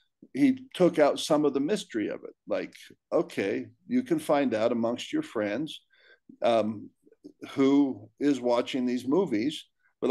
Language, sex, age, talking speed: English, male, 50-69, 150 wpm